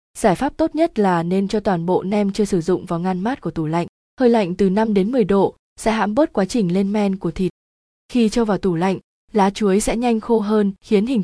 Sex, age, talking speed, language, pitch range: female, 20-39, 255 wpm, Vietnamese, 185-225 Hz